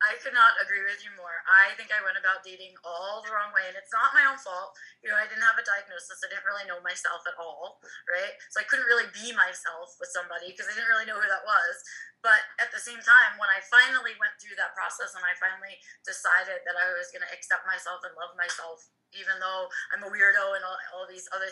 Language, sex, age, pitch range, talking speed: English, female, 20-39, 185-235 Hz, 250 wpm